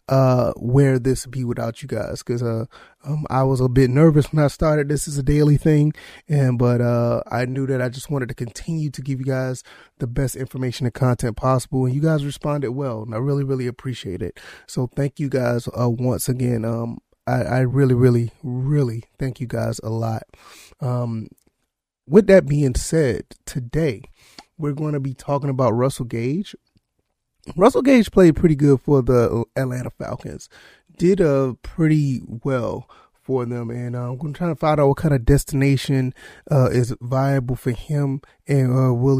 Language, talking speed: English, 185 wpm